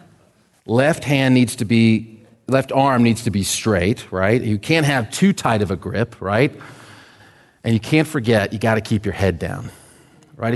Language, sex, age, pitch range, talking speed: English, male, 40-59, 110-145 Hz, 190 wpm